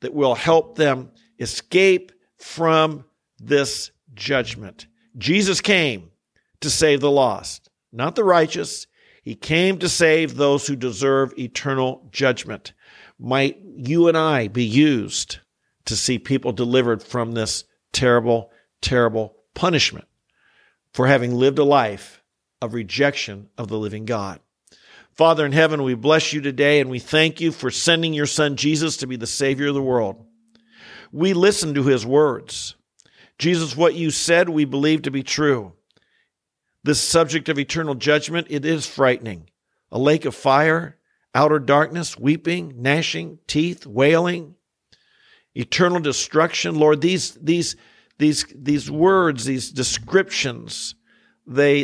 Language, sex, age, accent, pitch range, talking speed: English, male, 50-69, American, 125-160 Hz, 135 wpm